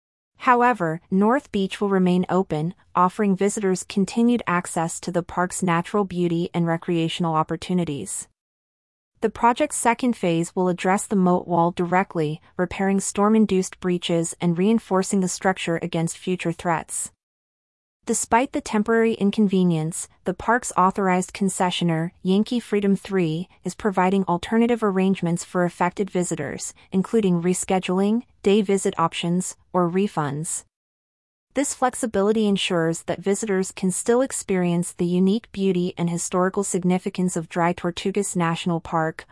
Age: 30-49